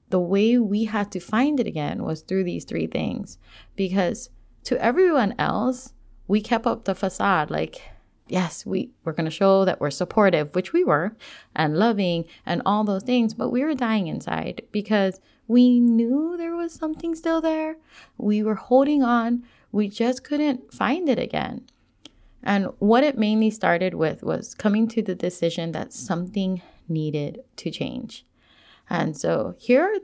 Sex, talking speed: female, 165 wpm